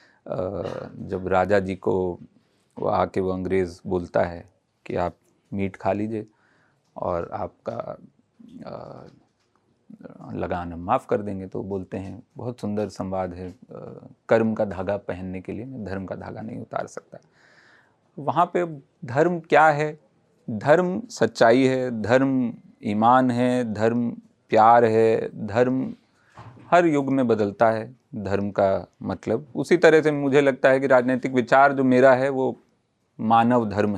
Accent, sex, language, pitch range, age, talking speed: native, male, Hindi, 100-135 Hz, 40-59, 140 wpm